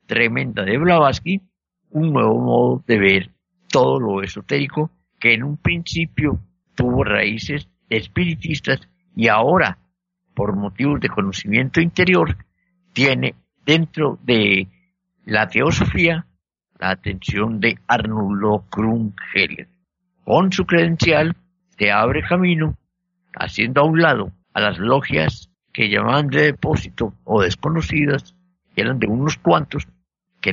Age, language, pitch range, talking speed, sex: 50-69, Spanish, 105-170 Hz, 115 wpm, male